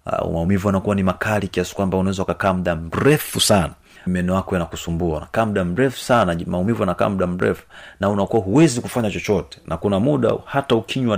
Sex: male